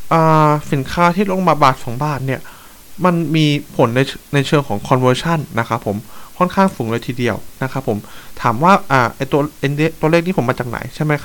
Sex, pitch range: male, 120-155 Hz